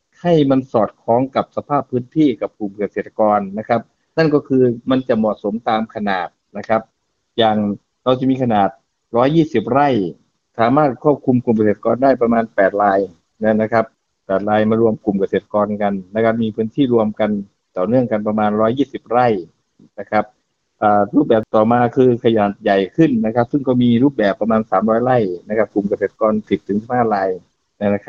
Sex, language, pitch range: male, Thai, 105-125 Hz